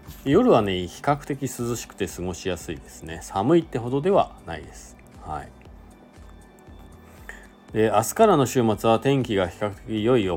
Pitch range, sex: 90-125 Hz, male